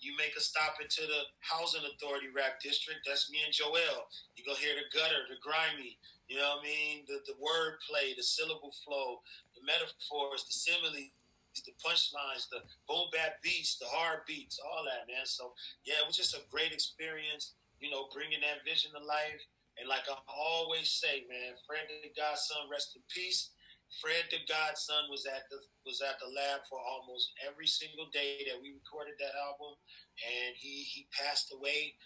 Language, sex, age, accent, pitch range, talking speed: English, male, 30-49, American, 140-160 Hz, 190 wpm